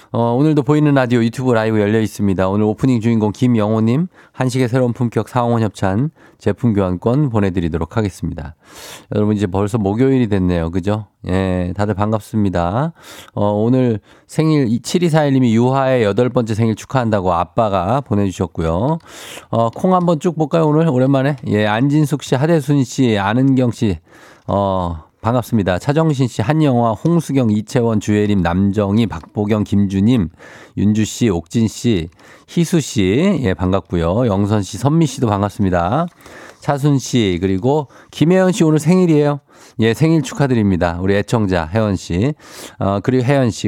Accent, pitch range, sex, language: native, 100-135 Hz, male, Korean